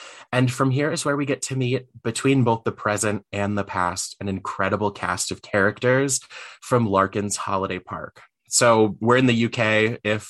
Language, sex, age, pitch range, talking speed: English, male, 20-39, 95-120 Hz, 180 wpm